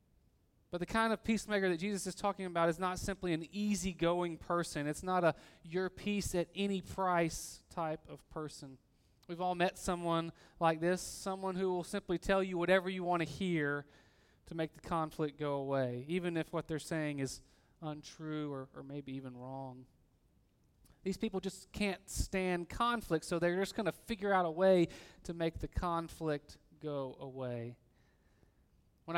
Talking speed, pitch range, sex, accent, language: 175 wpm, 150-190 Hz, male, American, English